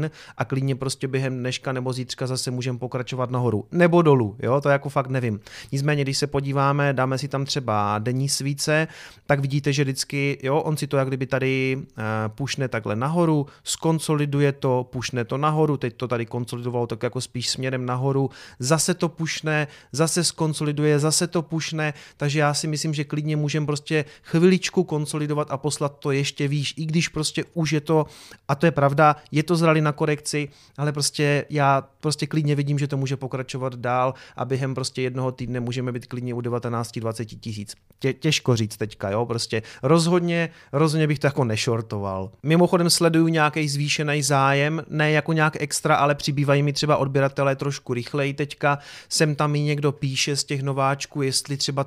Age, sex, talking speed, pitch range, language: 30-49, male, 180 wpm, 130-150 Hz, Czech